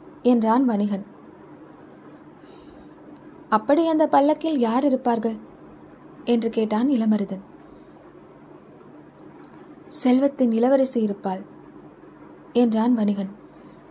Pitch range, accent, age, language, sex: 225-275 Hz, native, 20-39, Tamil, female